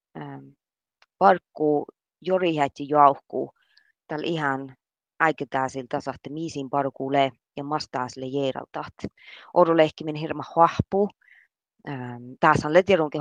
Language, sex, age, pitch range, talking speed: Finnish, female, 30-49, 140-170 Hz, 100 wpm